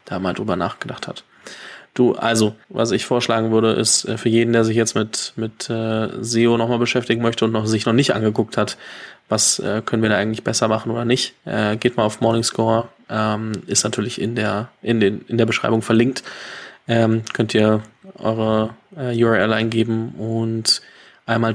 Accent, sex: German, male